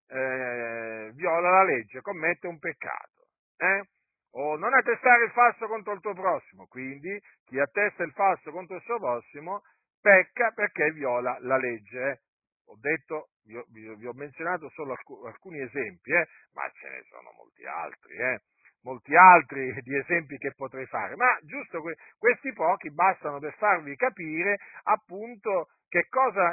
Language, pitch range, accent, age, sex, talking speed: Italian, 145-225 Hz, native, 50-69, male, 155 wpm